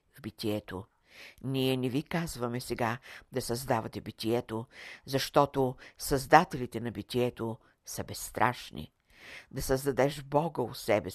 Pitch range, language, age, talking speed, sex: 110-135 Hz, Bulgarian, 60-79, 115 wpm, female